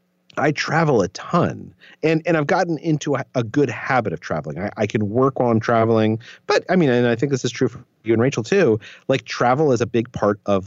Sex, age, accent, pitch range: male, 30-49, American, 115-185 Hz